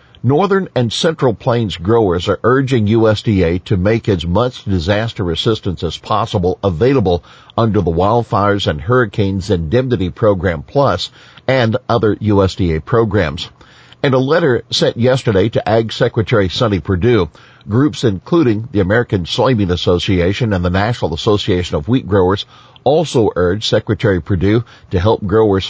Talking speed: 140 wpm